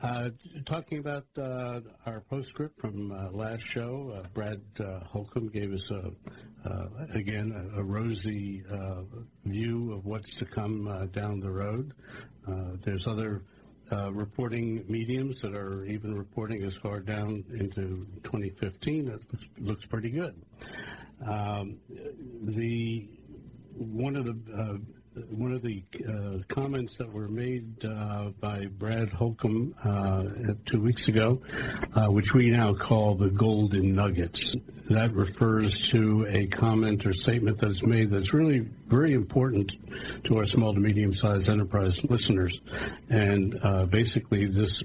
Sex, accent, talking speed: male, American, 140 wpm